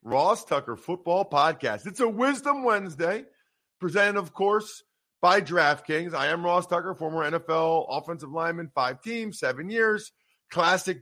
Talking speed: 140 wpm